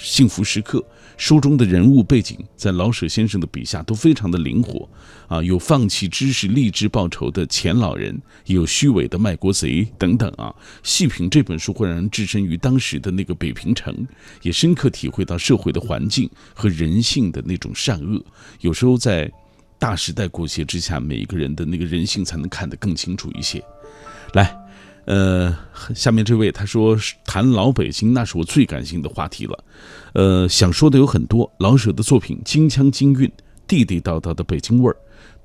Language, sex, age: Chinese, male, 50-69